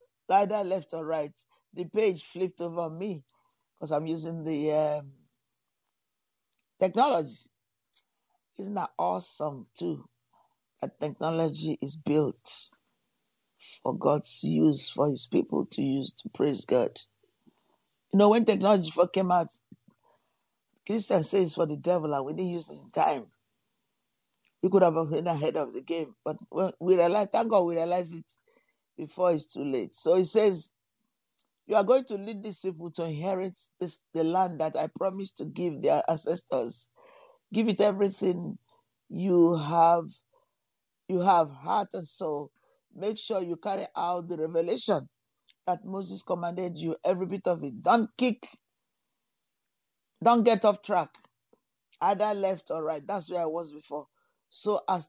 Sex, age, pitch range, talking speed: male, 50-69, 160-205 Hz, 150 wpm